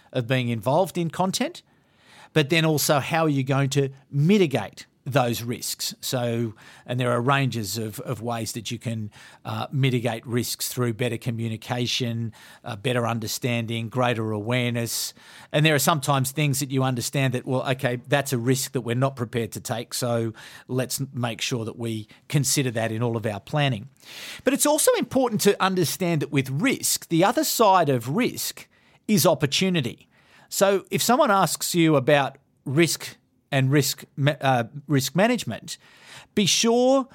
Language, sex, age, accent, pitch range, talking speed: English, male, 40-59, Australian, 125-165 Hz, 165 wpm